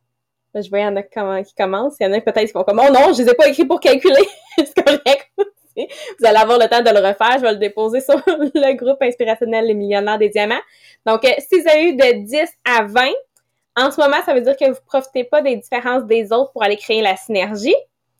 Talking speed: 255 wpm